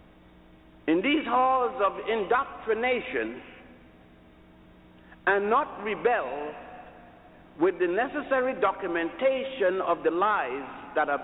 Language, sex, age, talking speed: English, male, 60-79, 90 wpm